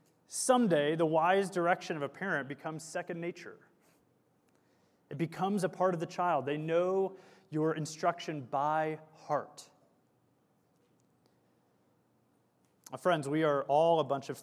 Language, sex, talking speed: English, male, 130 wpm